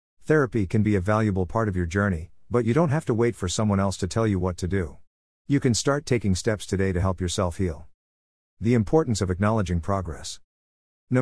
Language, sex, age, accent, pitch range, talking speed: English, male, 50-69, American, 90-115 Hz, 215 wpm